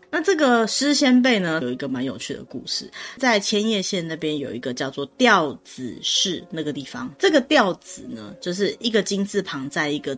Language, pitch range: Chinese, 140-205 Hz